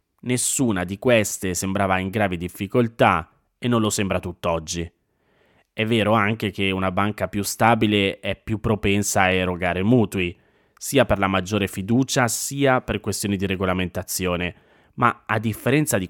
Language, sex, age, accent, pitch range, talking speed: Italian, male, 20-39, native, 95-115 Hz, 150 wpm